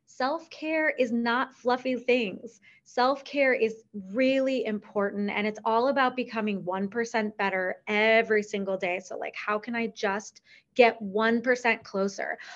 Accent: American